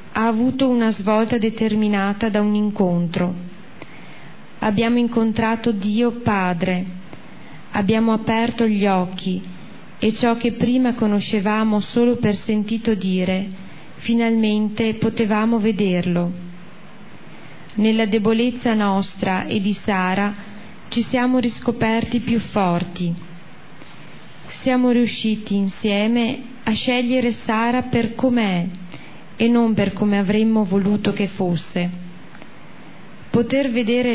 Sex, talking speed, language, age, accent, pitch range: female, 100 wpm, Italian, 30-49, native, 195-230 Hz